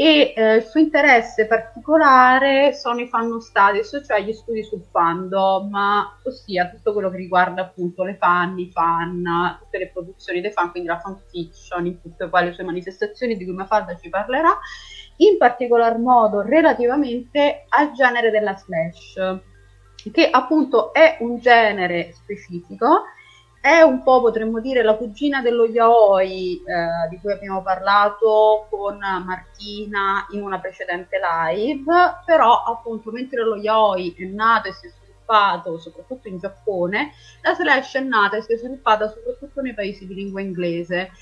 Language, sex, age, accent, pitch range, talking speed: Italian, female, 30-49, native, 185-250 Hz, 155 wpm